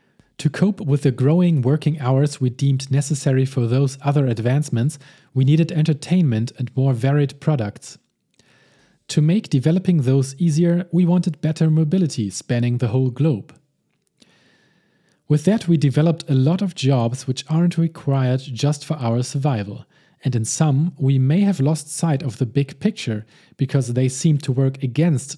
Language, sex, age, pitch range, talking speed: English, male, 40-59, 130-160 Hz, 160 wpm